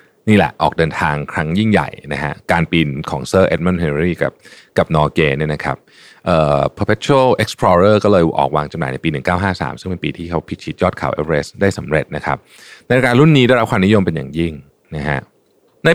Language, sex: Thai, male